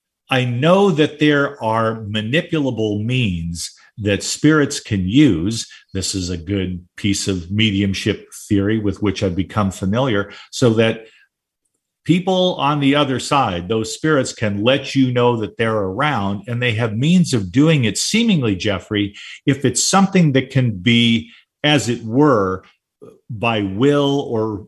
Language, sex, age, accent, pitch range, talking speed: English, male, 50-69, American, 105-140 Hz, 150 wpm